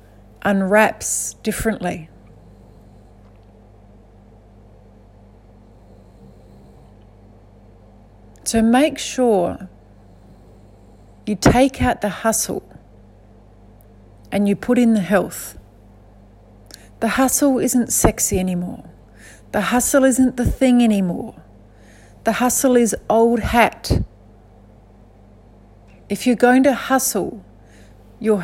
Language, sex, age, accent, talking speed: English, female, 40-59, Australian, 80 wpm